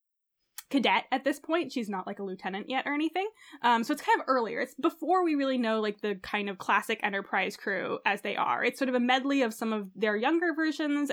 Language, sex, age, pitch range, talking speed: English, female, 10-29, 220-300 Hz, 235 wpm